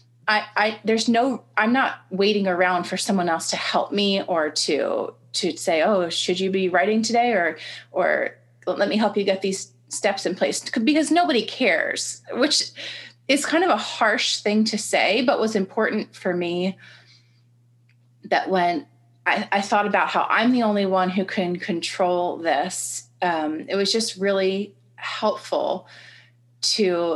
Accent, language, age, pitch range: American, English, 30-49, 175-215 Hz